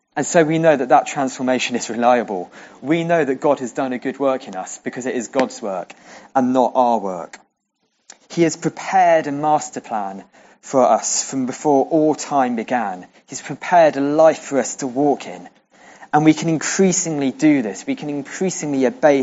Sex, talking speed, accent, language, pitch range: male, 190 wpm, British, English, 130-165 Hz